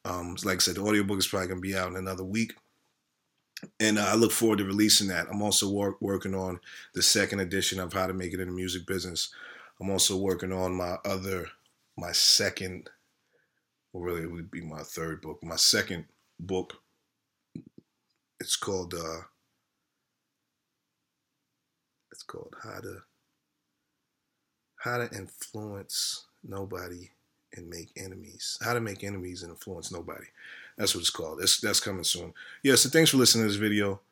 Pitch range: 90-100 Hz